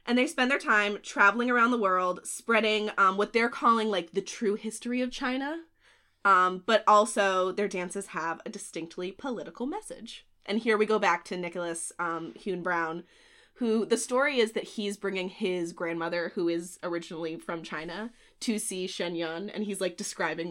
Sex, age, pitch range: female, 20-39, 185-245 Hz